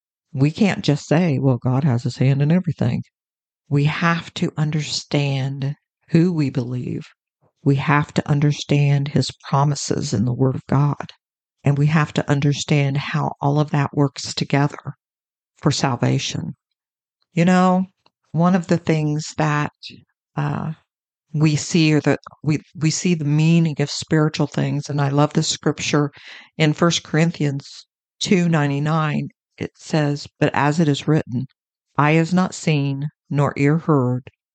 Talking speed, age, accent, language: 150 wpm, 50-69, American, English